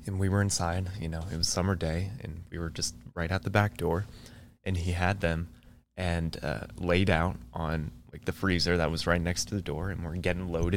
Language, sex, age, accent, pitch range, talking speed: English, male, 20-39, American, 80-105 Hz, 235 wpm